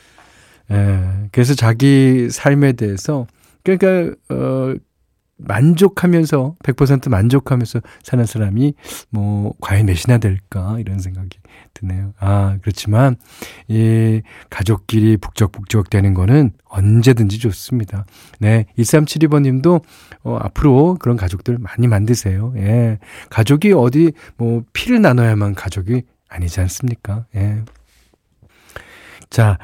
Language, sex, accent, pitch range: Korean, male, native, 100-130 Hz